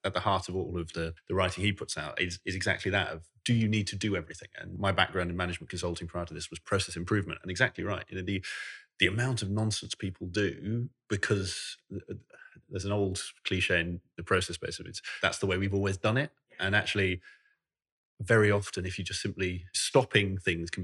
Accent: British